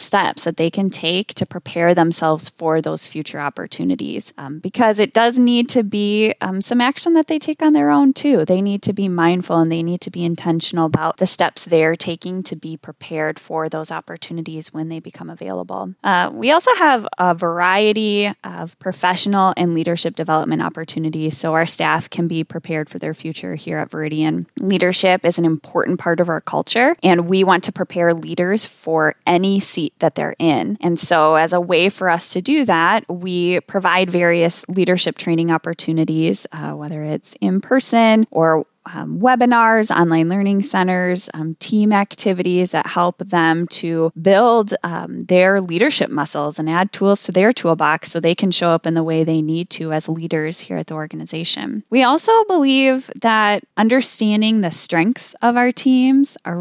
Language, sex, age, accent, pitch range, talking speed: English, female, 10-29, American, 165-205 Hz, 180 wpm